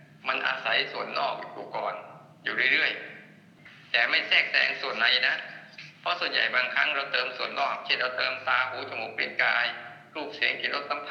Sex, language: male, Thai